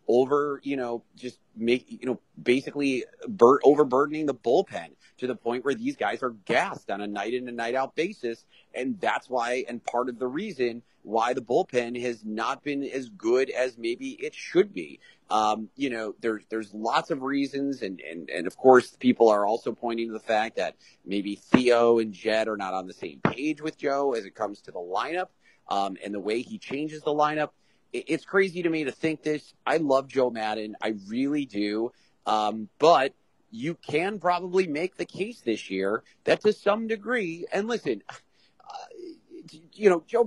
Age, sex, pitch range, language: 30-49, male, 120-190 Hz, English